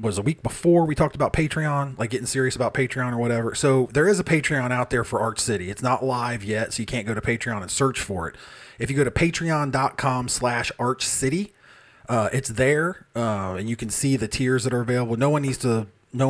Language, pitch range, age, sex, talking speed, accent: English, 105-130 Hz, 30-49, male, 240 wpm, American